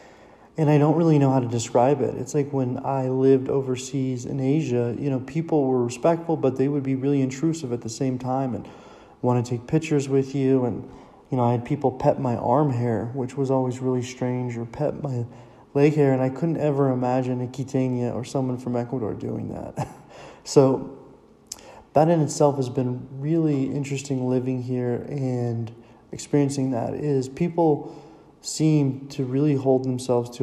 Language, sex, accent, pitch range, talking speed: English, male, American, 120-140 Hz, 185 wpm